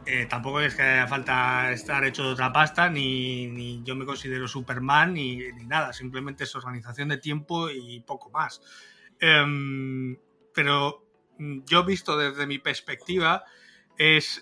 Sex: male